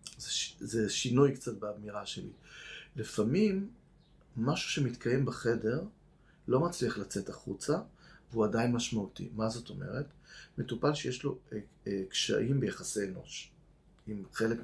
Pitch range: 110-145 Hz